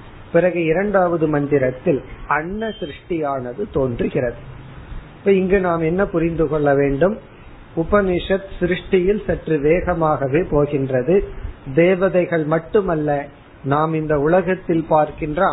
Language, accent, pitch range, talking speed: Tamil, native, 140-180 Hz, 95 wpm